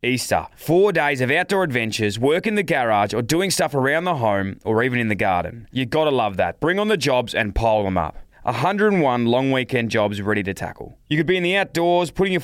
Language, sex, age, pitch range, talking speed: English, male, 20-39, 105-160 Hz, 230 wpm